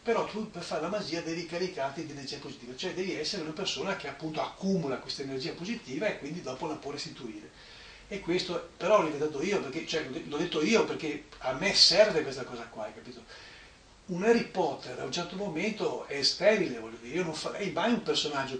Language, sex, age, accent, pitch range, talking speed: English, male, 40-59, Italian, 140-180 Hz, 210 wpm